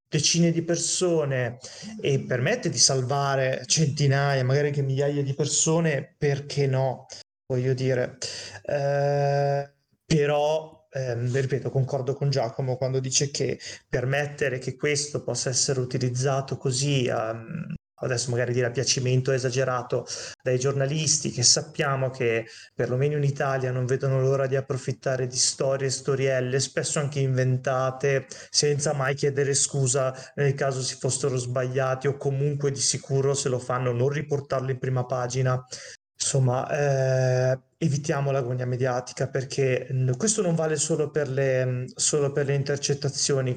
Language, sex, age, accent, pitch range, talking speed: Italian, male, 20-39, native, 130-160 Hz, 130 wpm